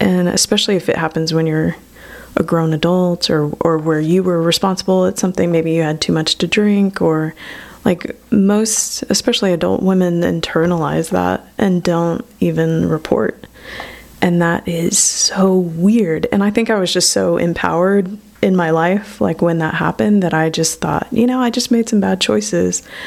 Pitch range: 165-205 Hz